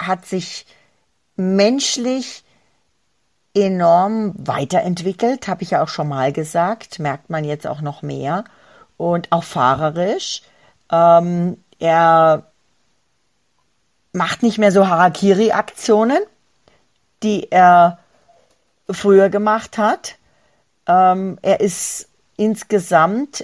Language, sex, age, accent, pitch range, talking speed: German, female, 40-59, German, 170-215 Hz, 95 wpm